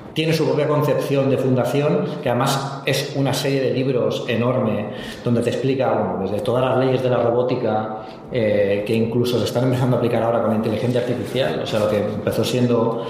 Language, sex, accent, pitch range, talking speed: Spanish, male, Spanish, 115-145 Hz, 190 wpm